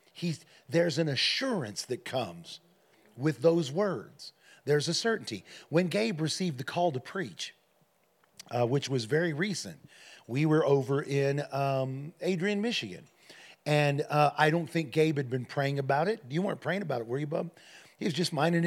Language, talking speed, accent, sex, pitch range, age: English, 175 wpm, American, male, 140-175 Hz, 40-59